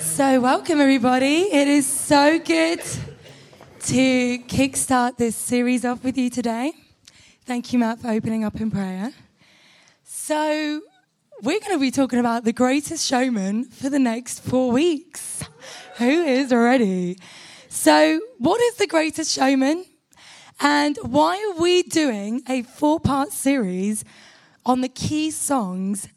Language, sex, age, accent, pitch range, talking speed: English, female, 20-39, British, 225-300 Hz, 135 wpm